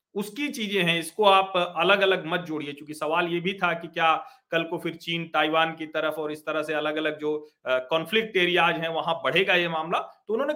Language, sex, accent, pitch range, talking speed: Hindi, male, native, 155-240 Hz, 220 wpm